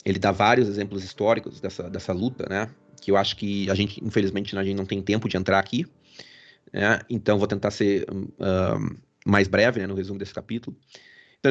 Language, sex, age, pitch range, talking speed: Portuguese, male, 30-49, 100-125 Hz, 200 wpm